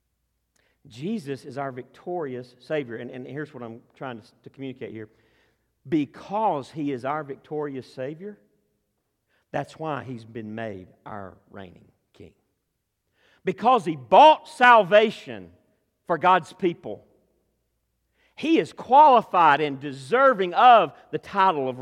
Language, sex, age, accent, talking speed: English, male, 50-69, American, 125 wpm